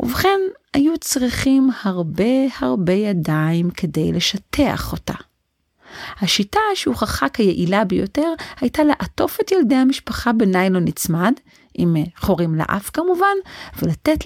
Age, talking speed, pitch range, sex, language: 40-59, 110 wpm, 175-265 Hz, female, Hebrew